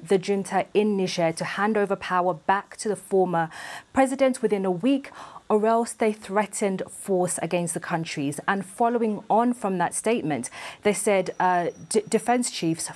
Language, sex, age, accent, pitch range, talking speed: English, female, 20-39, British, 180-225 Hz, 160 wpm